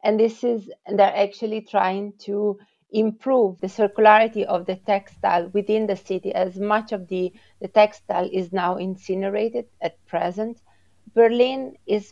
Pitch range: 180-215 Hz